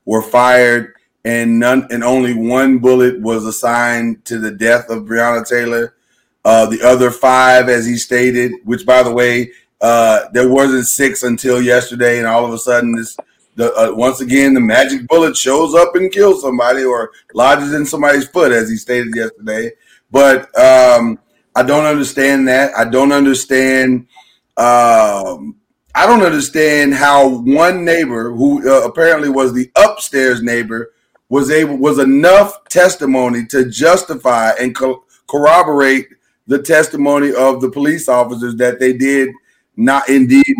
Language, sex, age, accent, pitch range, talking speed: English, male, 30-49, American, 125-155 Hz, 155 wpm